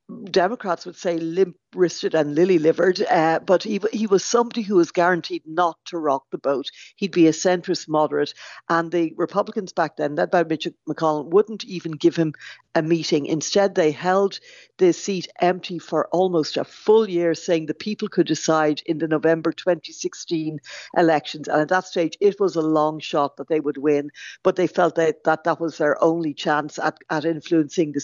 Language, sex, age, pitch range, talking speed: English, female, 60-79, 155-190 Hz, 185 wpm